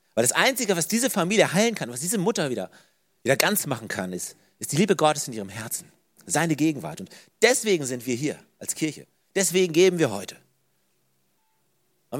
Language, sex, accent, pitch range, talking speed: German, male, German, 125-180 Hz, 185 wpm